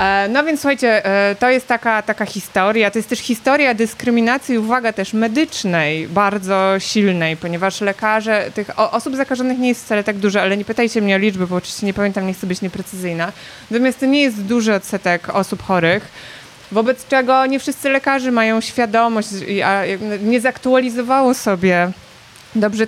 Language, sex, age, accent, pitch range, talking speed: Polish, female, 20-39, native, 195-240 Hz, 160 wpm